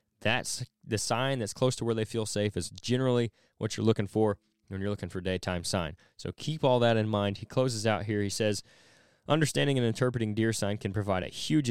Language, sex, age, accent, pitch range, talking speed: English, male, 20-39, American, 100-120 Hz, 220 wpm